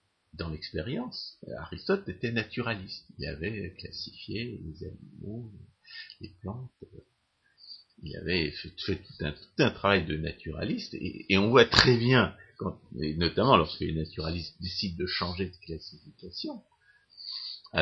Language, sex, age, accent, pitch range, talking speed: French, male, 50-69, French, 80-115 Hz, 135 wpm